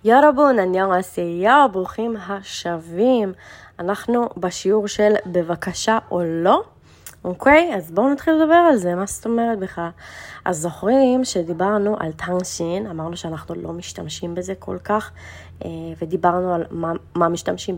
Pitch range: 170-215 Hz